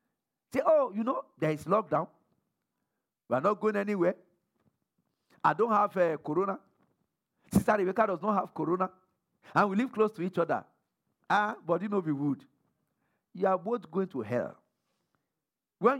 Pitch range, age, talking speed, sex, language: 170-275 Hz, 50-69, 160 wpm, male, English